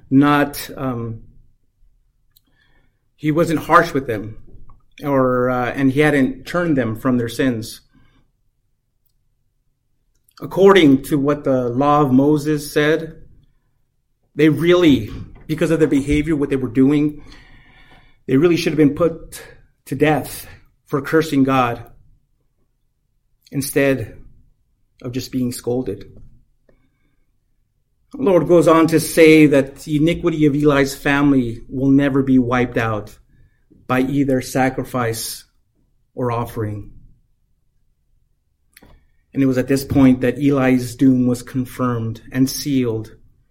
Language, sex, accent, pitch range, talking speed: English, male, American, 120-140 Hz, 115 wpm